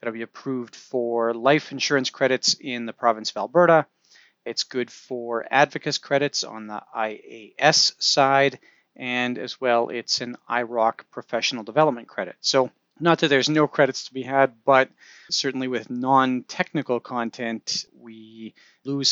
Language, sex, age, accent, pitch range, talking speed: English, male, 40-59, American, 115-135 Hz, 145 wpm